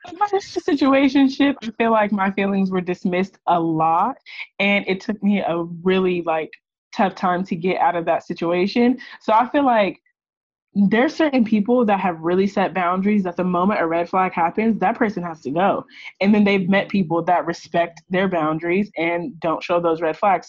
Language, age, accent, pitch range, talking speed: English, 20-39, American, 180-230 Hz, 185 wpm